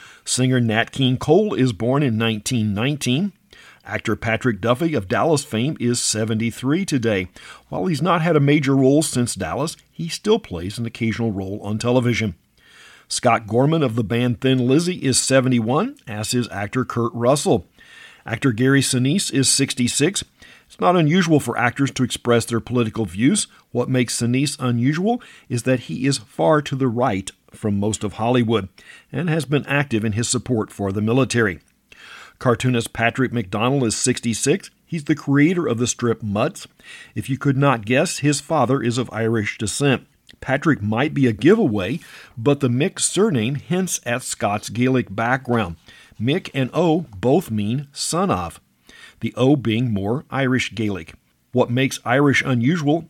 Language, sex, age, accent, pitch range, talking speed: English, male, 50-69, American, 115-140 Hz, 165 wpm